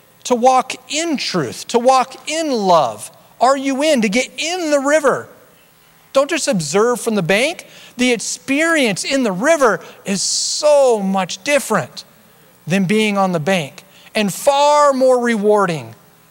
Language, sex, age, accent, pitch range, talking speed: English, male, 40-59, American, 155-250 Hz, 145 wpm